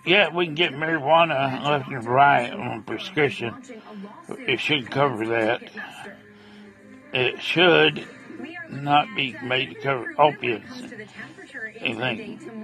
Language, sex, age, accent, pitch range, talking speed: English, male, 60-79, American, 140-220 Hz, 110 wpm